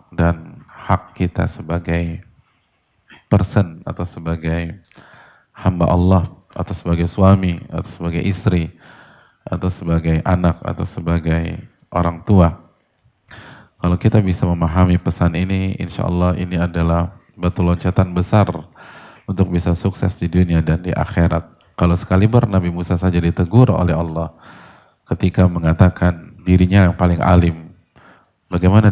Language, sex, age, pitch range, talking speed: Indonesian, male, 20-39, 85-95 Hz, 120 wpm